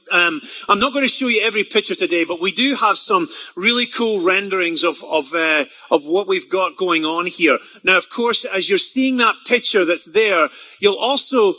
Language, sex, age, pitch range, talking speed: English, male, 30-49, 190-265 Hz, 205 wpm